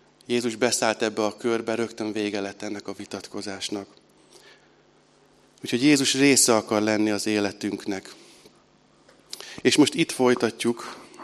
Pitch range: 105-120 Hz